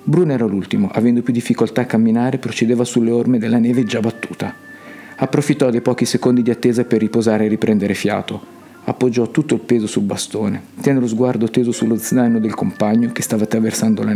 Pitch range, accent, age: 110-160 Hz, native, 50-69